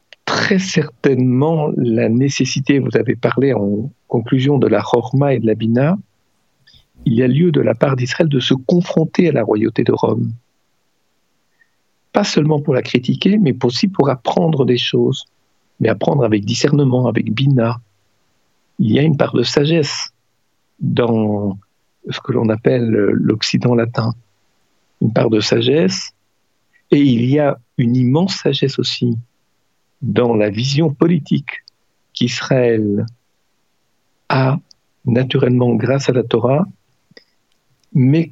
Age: 50-69